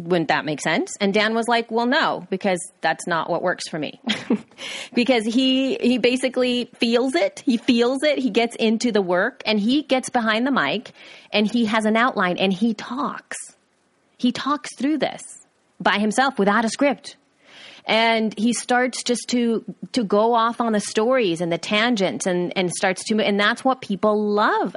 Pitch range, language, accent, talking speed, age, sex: 180-235 Hz, English, American, 185 wpm, 30-49, female